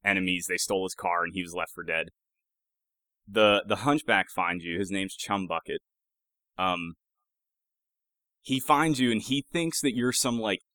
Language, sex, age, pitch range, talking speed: English, male, 20-39, 95-120 Hz, 175 wpm